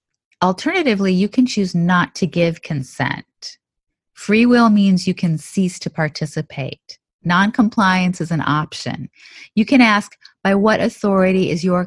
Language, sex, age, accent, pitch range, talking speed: English, female, 30-49, American, 145-195 Hz, 140 wpm